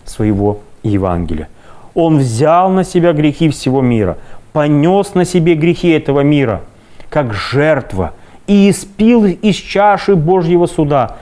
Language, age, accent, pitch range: Russian, 30-49, native, 100-155 Hz